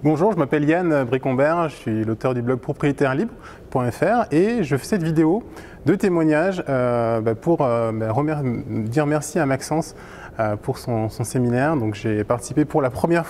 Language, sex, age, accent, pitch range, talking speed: French, male, 20-39, French, 115-150 Hz, 150 wpm